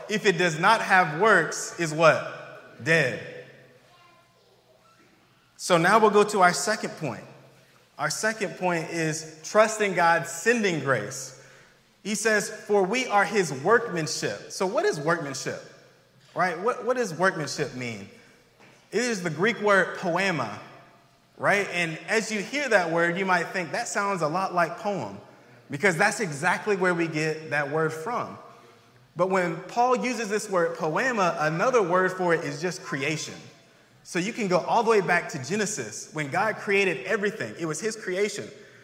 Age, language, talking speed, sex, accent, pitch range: 30-49, English, 160 wpm, male, American, 160-210 Hz